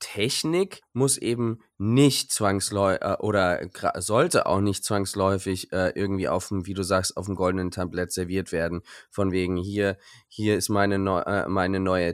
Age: 20-39